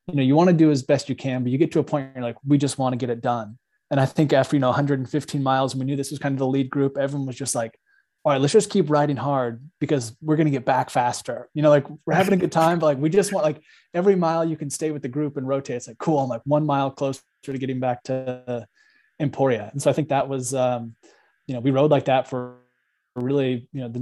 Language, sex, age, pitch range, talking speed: English, male, 20-39, 125-150 Hz, 290 wpm